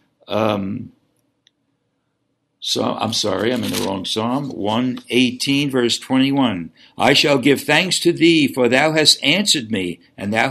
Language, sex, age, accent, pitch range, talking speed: English, male, 60-79, American, 120-155 Hz, 150 wpm